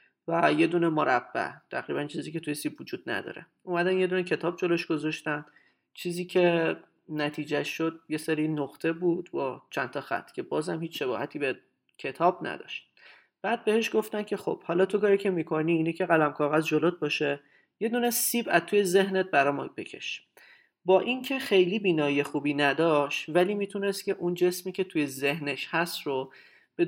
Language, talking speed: Persian, 170 wpm